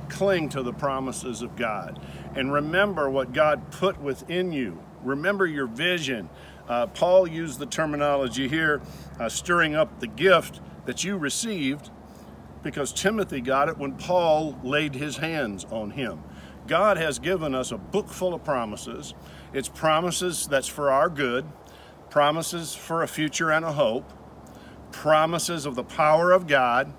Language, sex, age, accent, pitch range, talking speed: English, male, 50-69, American, 130-175 Hz, 155 wpm